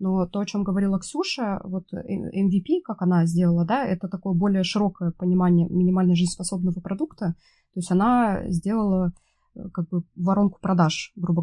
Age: 20-39